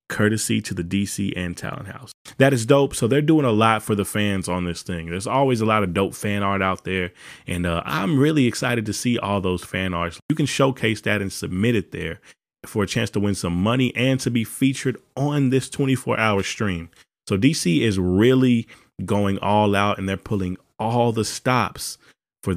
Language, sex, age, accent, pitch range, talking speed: English, male, 20-39, American, 95-125 Hz, 215 wpm